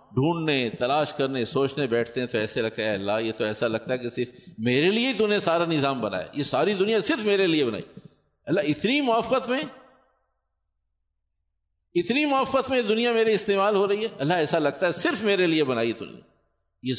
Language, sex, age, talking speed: Urdu, male, 50-69, 185 wpm